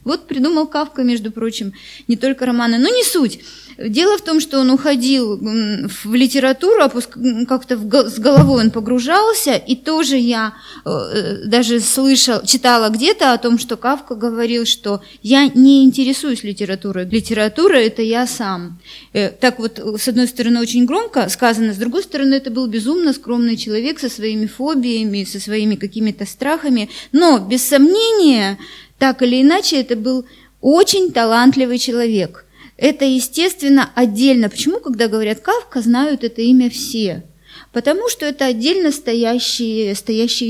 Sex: female